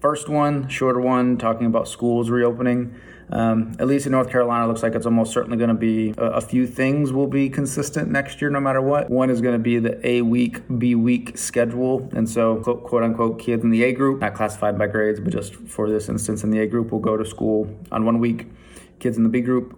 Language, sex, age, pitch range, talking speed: English, male, 20-39, 110-125 Hz, 240 wpm